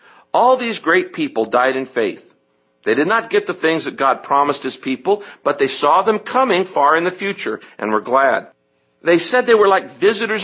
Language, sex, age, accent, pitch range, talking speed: English, male, 60-79, American, 125-195 Hz, 205 wpm